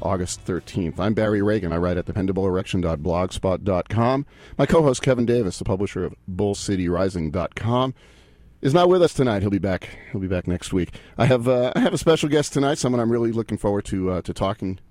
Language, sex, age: English, male, 40-59